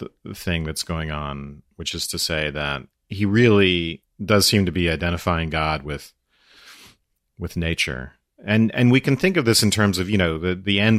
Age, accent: 40-59, American